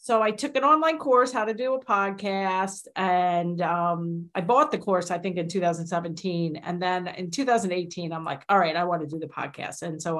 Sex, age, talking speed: female, 50-69, 220 wpm